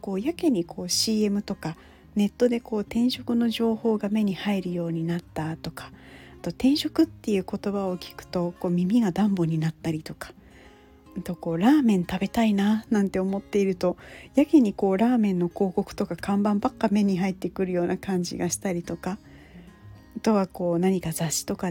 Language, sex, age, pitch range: Japanese, female, 40-59, 175-230 Hz